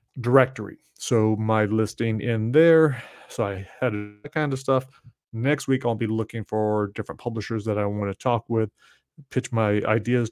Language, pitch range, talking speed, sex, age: English, 110-130 Hz, 175 wpm, male, 30-49